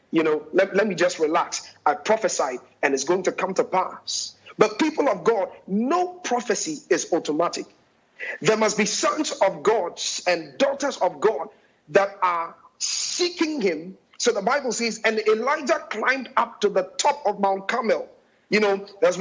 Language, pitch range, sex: English, 195-285 Hz, male